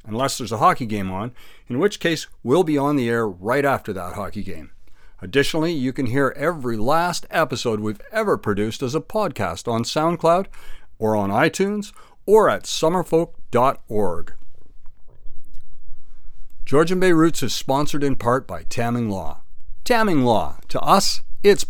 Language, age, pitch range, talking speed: English, 60-79, 115-155 Hz, 150 wpm